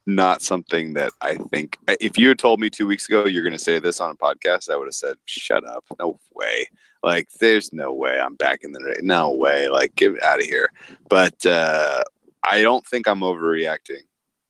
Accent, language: American, English